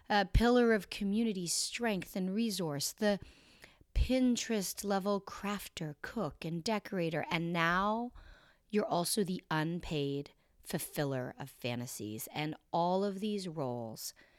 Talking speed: 115 wpm